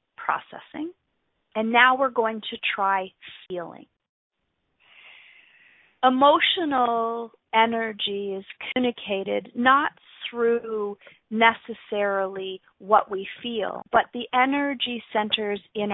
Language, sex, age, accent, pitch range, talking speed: English, female, 40-59, American, 200-235 Hz, 85 wpm